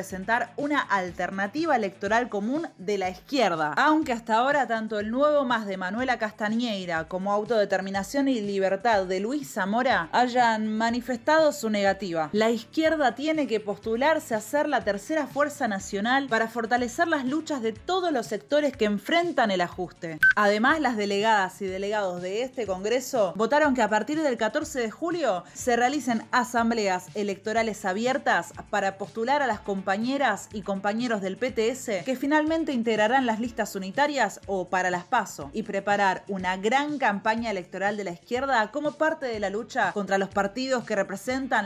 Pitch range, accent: 195-265 Hz, Argentinian